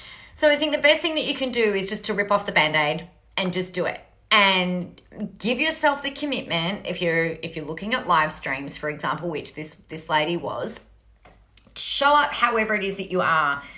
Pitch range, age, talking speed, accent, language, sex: 175-240 Hz, 30-49, 215 wpm, Australian, English, female